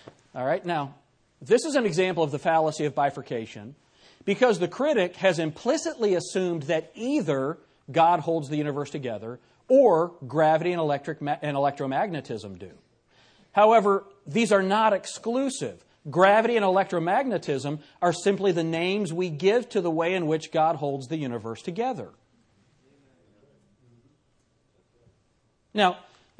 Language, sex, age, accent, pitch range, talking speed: English, male, 40-59, American, 130-195 Hz, 130 wpm